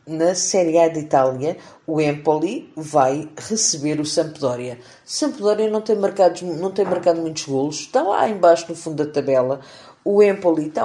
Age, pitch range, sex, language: 50-69, 145-185 Hz, female, Portuguese